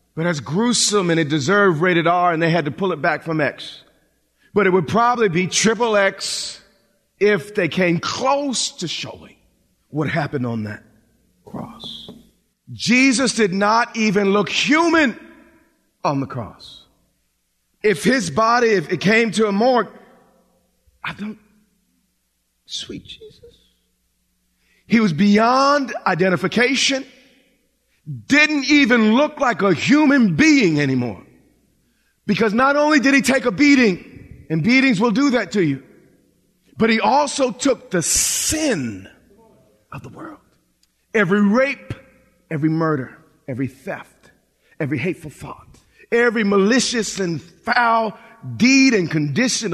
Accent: American